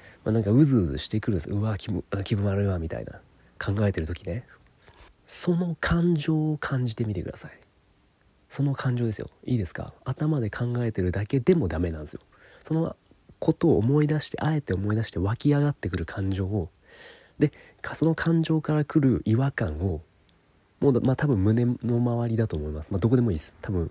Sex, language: male, Japanese